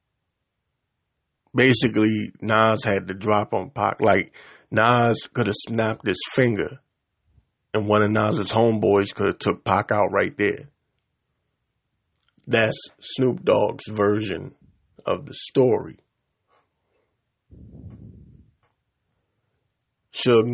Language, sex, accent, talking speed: English, male, American, 100 wpm